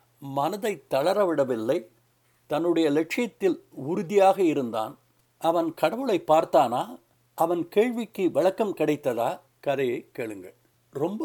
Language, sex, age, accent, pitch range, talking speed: Tamil, male, 60-79, native, 155-240 Hz, 85 wpm